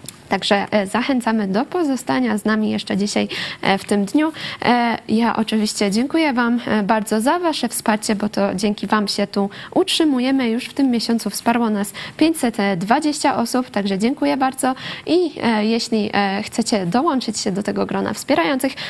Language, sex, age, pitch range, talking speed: Polish, female, 20-39, 210-270 Hz, 145 wpm